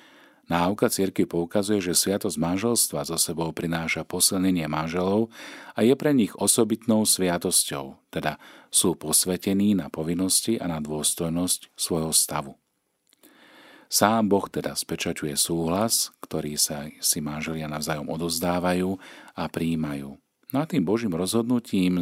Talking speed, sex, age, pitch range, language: 125 wpm, male, 40-59, 80-100 Hz, Slovak